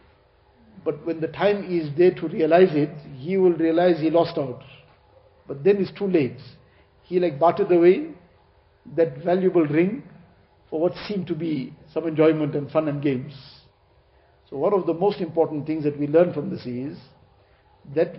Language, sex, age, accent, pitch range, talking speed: English, male, 50-69, Indian, 140-175 Hz, 170 wpm